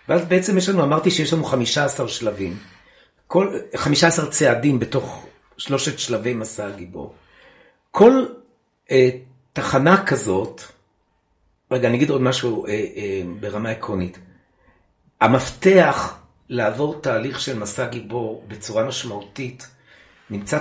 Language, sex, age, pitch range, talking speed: Hebrew, male, 60-79, 115-160 Hz, 115 wpm